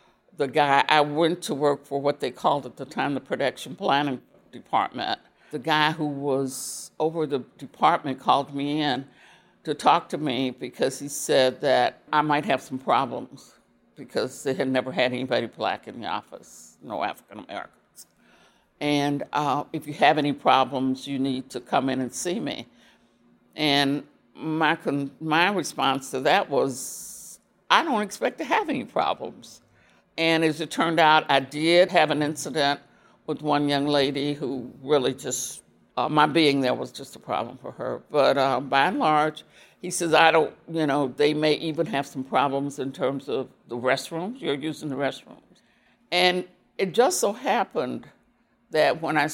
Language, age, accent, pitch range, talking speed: English, 60-79, American, 140-160 Hz, 175 wpm